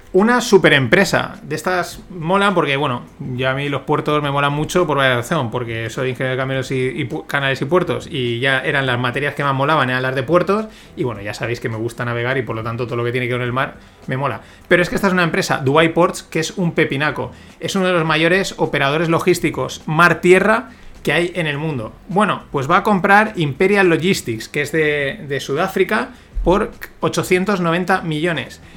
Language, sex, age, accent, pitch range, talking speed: Spanish, male, 30-49, Spanish, 135-180 Hz, 220 wpm